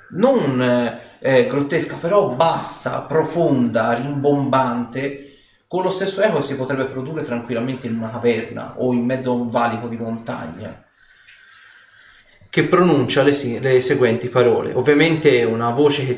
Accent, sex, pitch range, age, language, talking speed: native, male, 115-145 Hz, 30-49, Italian, 140 wpm